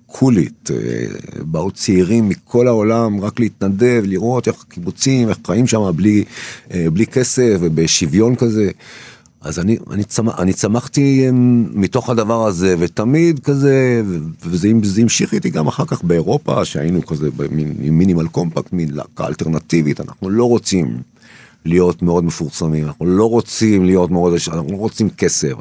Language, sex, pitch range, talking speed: Hebrew, male, 85-115 Hz, 135 wpm